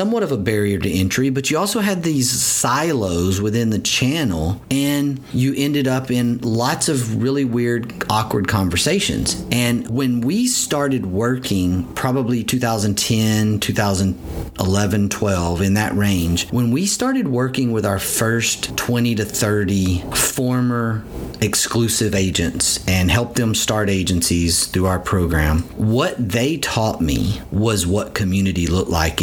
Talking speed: 140 wpm